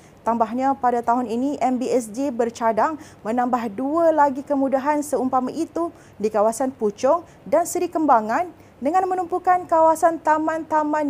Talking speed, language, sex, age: 120 wpm, Malay, female, 30-49